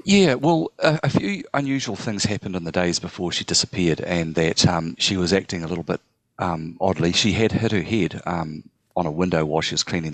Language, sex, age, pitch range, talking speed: English, male, 40-59, 80-95 Hz, 225 wpm